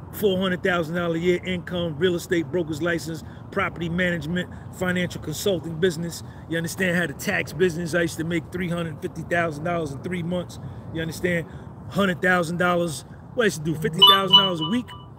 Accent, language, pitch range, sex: American, English, 120-185 Hz, male